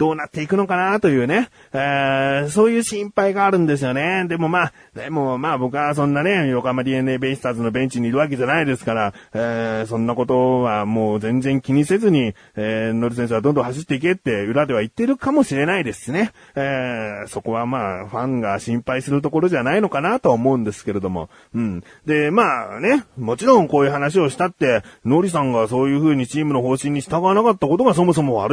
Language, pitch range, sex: Japanese, 125-205 Hz, male